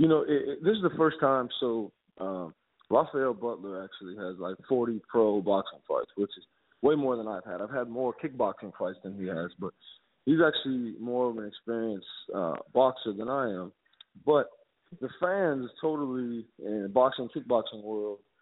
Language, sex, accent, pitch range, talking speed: English, male, American, 105-130 Hz, 180 wpm